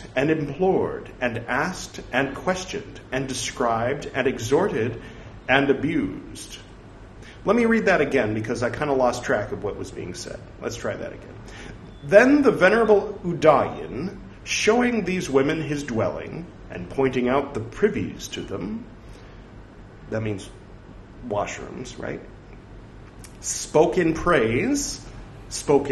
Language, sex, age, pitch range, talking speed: English, male, 40-59, 105-160 Hz, 125 wpm